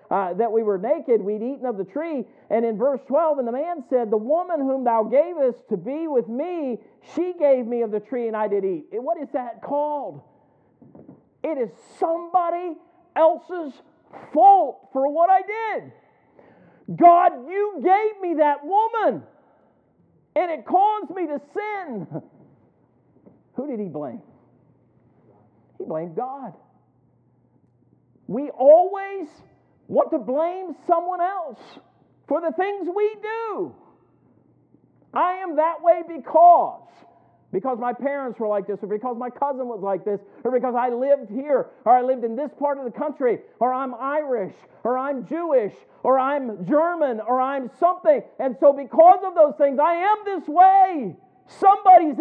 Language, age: English, 50-69